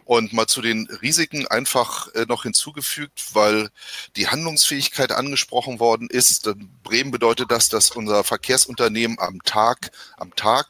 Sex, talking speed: male, 130 wpm